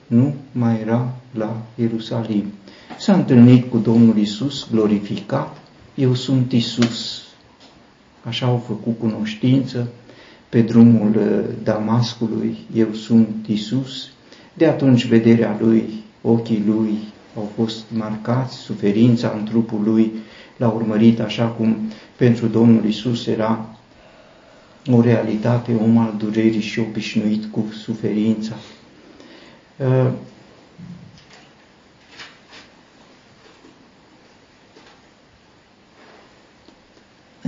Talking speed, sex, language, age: 90 wpm, male, Romanian, 50-69